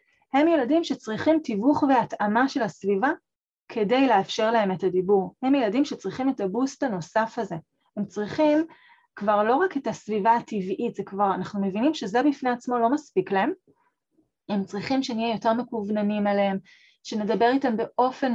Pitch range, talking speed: 205-265 Hz, 150 wpm